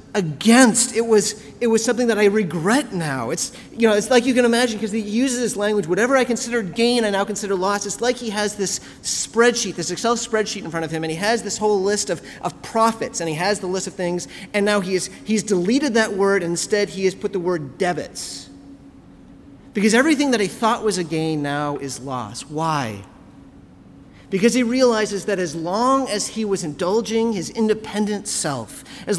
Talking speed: 210 wpm